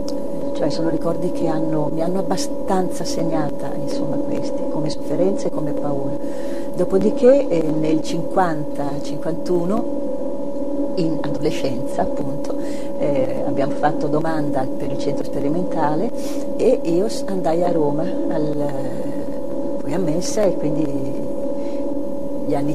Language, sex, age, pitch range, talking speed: Italian, female, 50-69, 170-280 Hz, 115 wpm